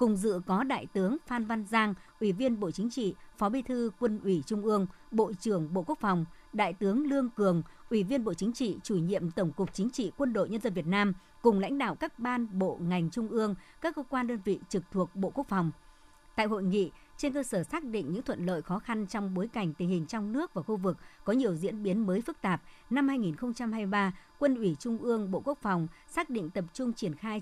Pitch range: 180-235 Hz